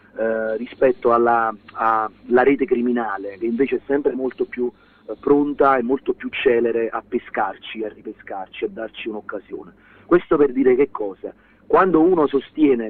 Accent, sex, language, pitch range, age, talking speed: native, male, Italian, 120-170 Hz, 40-59, 150 wpm